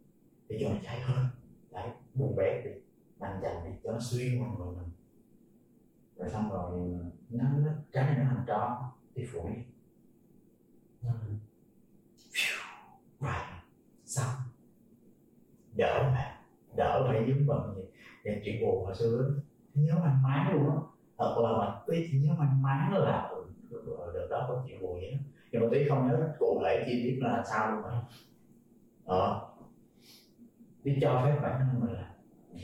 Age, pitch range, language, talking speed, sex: 30-49, 115-145 Hz, Vietnamese, 155 wpm, male